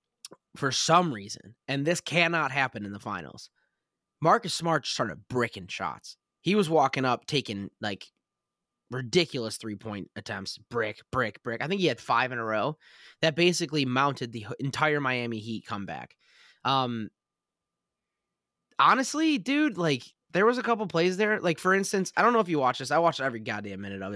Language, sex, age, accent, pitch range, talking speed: English, male, 20-39, American, 115-165 Hz, 170 wpm